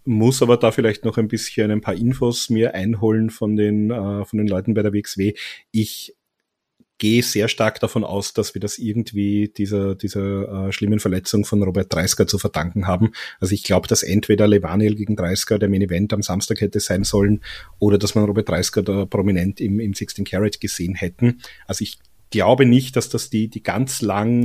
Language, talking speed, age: German, 195 wpm, 30-49